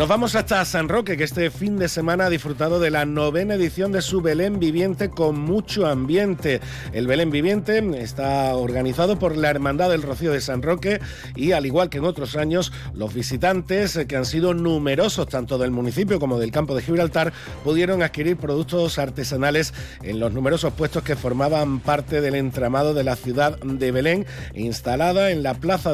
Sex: male